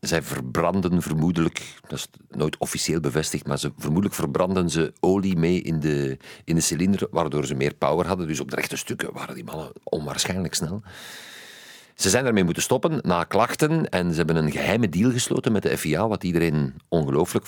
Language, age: Dutch, 50-69